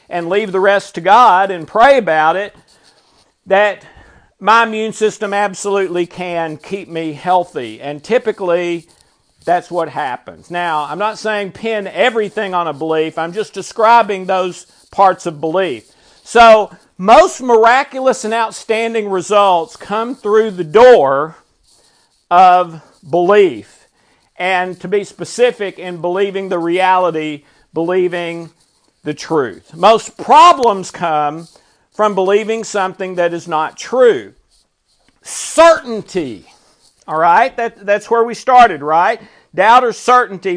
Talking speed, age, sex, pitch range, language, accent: 120 wpm, 50-69, male, 180-230 Hz, English, American